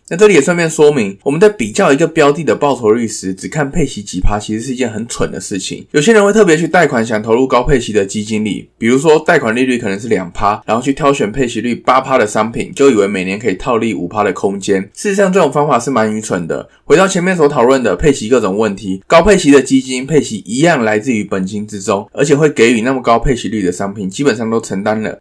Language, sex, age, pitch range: Chinese, male, 20-39, 115-170 Hz